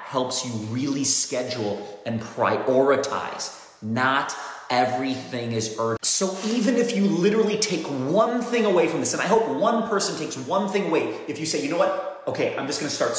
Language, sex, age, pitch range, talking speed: English, male, 30-49, 125-185 Hz, 185 wpm